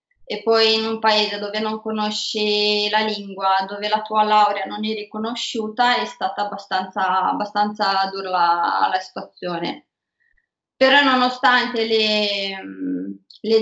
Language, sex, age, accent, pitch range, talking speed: Italian, female, 20-39, native, 205-235 Hz, 125 wpm